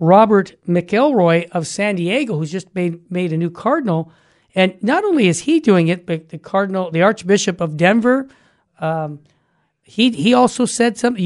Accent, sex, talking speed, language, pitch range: American, male, 170 wpm, English, 175-230 Hz